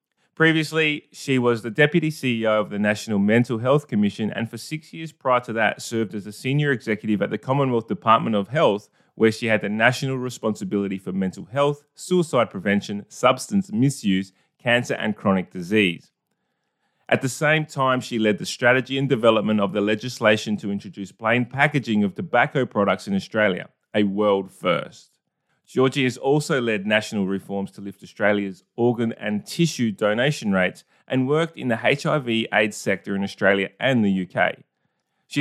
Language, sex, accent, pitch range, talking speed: English, male, Australian, 105-135 Hz, 170 wpm